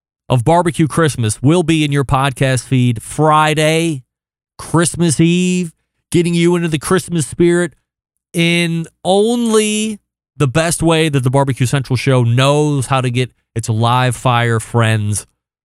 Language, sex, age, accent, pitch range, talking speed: English, male, 30-49, American, 115-160 Hz, 140 wpm